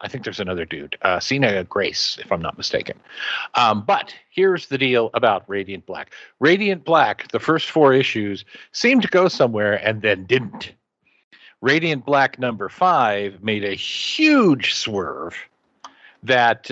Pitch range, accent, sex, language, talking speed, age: 115-165 Hz, American, male, English, 150 wpm, 50-69